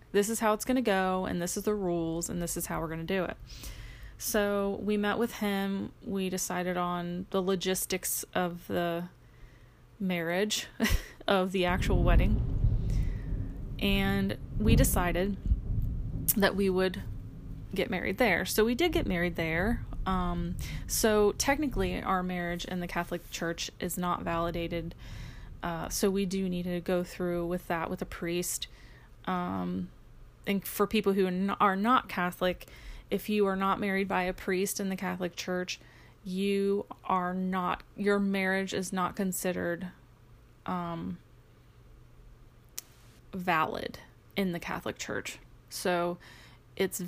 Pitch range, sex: 170-195 Hz, female